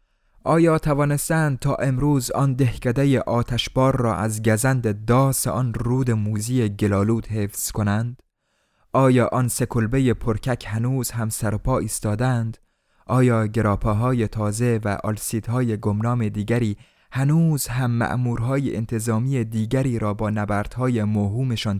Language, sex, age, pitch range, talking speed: Persian, male, 20-39, 115-140 Hz, 120 wpm